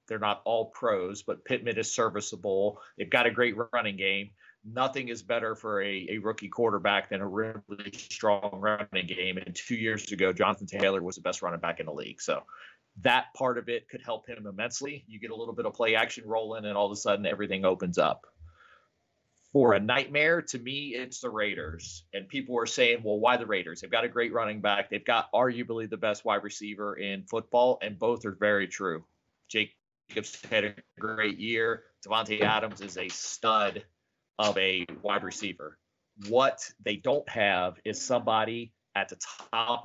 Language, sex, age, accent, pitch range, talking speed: English, male, 30-49, American, 100-120 Hz, 195 wpm